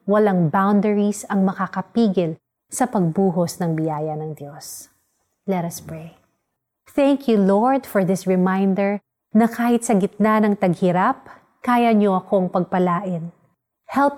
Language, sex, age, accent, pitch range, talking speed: Filipino, female, 30-49, native, 180-220 Hz, 125 wpm